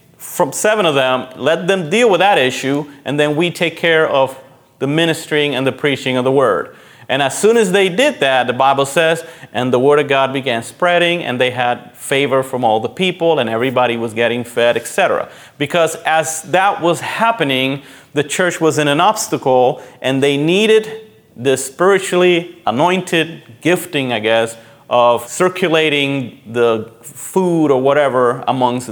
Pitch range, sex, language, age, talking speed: 130-175 Hz, male, English, 30-49, 170 wpm